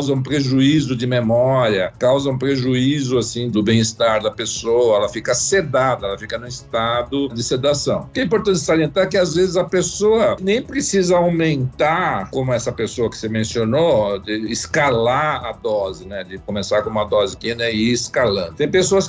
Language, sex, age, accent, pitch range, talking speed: Portuguese, male, 60-79, Brazilian, 120-160 Hz, 185 wpm